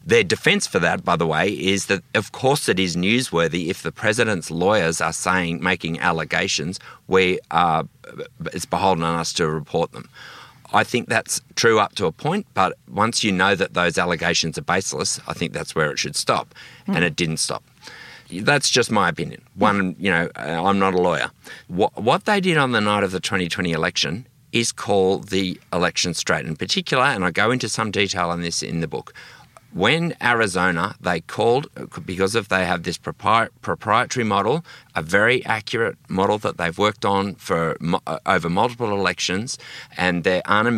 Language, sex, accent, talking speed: English, male, Australian, 185 wpm